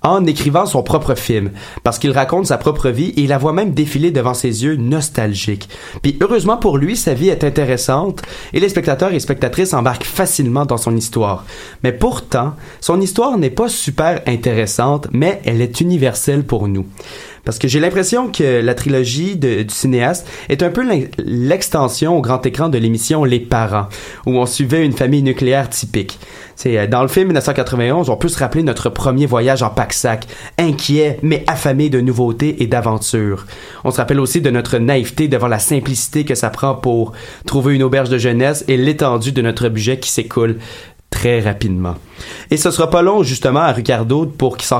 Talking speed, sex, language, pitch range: 190 wpm, male, French, 120-155 Hz